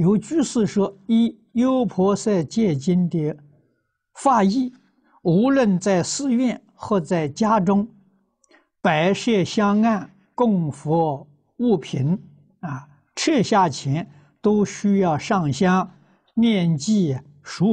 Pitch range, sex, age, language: 120-195 Hz, male, 60-79, Chinese